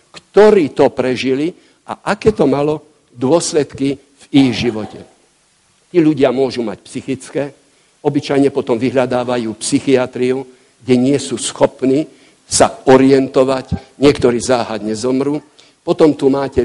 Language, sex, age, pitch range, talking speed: Slovak, male, 60-79, 125-150 Hz, 115 wpm